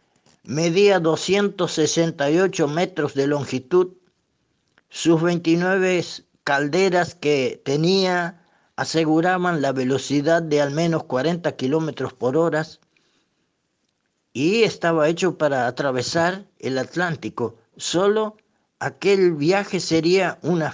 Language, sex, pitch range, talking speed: Spanish, male, 145-190 Hz, 95 wpm